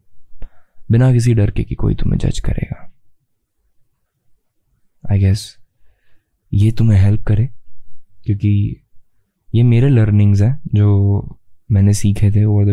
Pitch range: 100-120 Hz